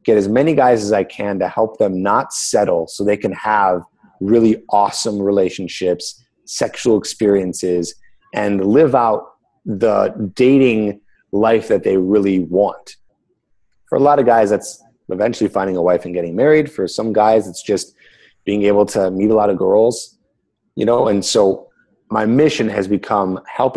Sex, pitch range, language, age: male, 95-115 Hz, English, 30-49